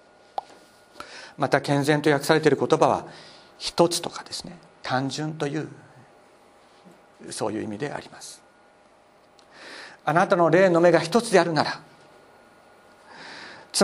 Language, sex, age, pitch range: Japanese, male, 50-69, 140-205 Hz